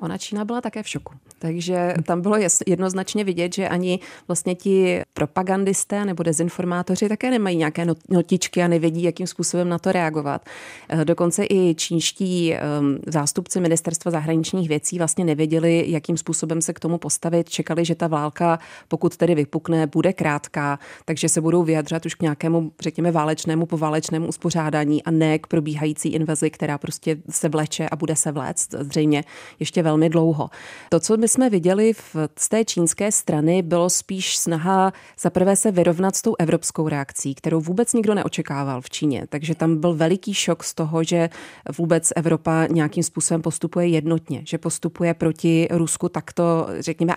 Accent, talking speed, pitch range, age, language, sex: native, 160 wpm, 160-180 Hz, 30-49, Czech, female